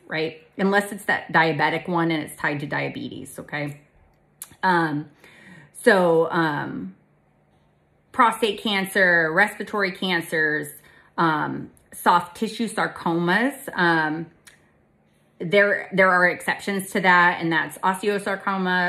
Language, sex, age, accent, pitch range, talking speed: English, female, 30-49, American, 160-195 Hz, 105 wpm